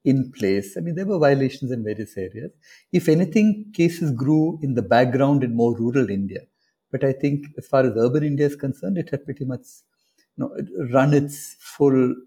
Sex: male